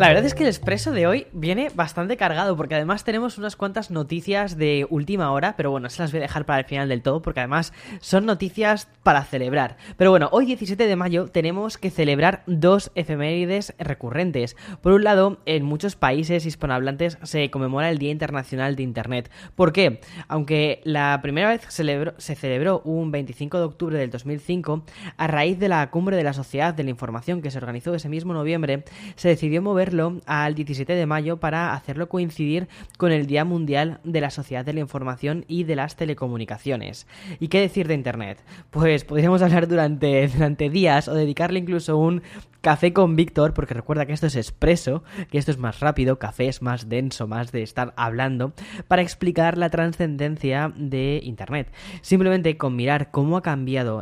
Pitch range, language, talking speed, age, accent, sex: 135-175 Hz, Spanish, 185 wpm, 10-29, Spanish, female